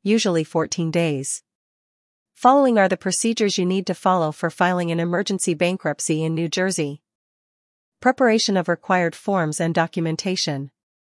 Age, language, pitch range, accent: 40-59, English, 160-195 Hz, American